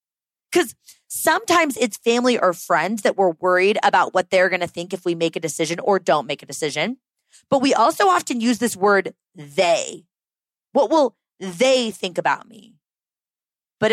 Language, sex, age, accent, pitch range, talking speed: English, female, 20-39, American, 190-280 Hz, 170 wpm